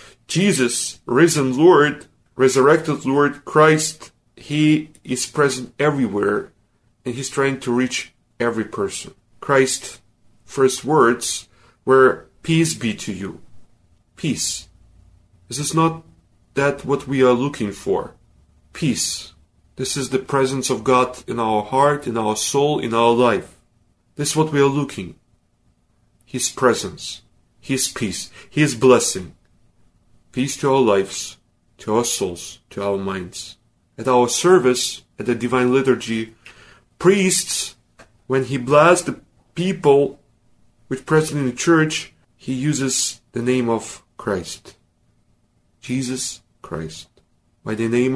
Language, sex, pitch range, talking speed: Ukrainian, male, 110-140 Hz, 130 wpm